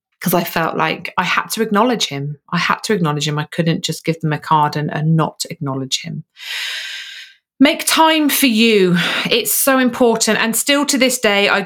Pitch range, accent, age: 165-220 Hz, British, 30-49